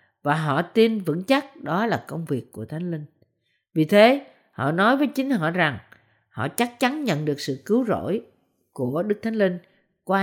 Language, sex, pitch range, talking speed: Vietnamese, female, 150-230 Hz, 195 wpm